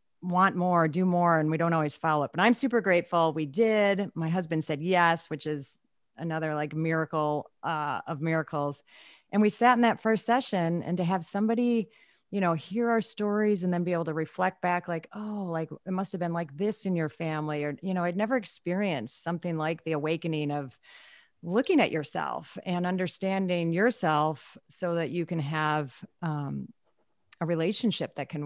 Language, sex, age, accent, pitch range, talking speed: English, female, 30-49, American, 155-185 Hz, 185 wpm